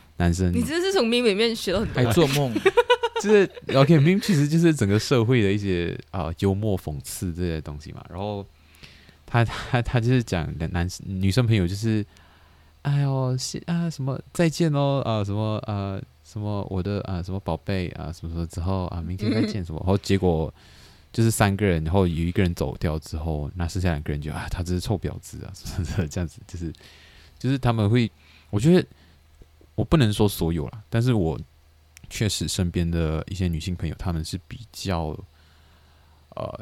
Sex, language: male, Chinese